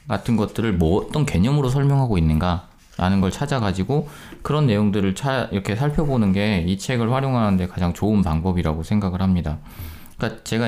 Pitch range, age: 90-120 Hz, 20-39